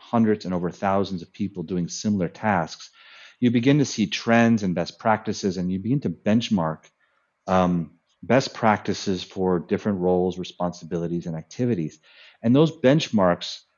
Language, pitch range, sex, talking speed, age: English, 90-115 Hz, male, 150 wpm, 40-59